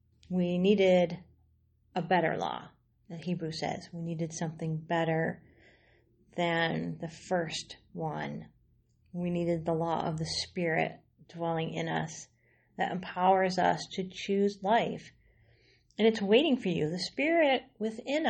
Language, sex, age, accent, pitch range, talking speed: English, female, 40-59, American, 165-225 Hz, 130 wpm